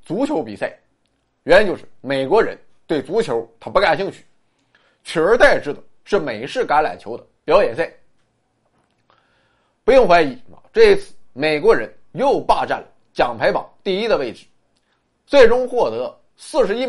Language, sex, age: Chinese, male, 30-49